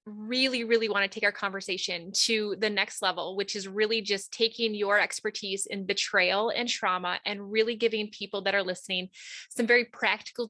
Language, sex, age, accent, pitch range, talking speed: English, female, 20-39, American, 195-235 Hz, 185 wpm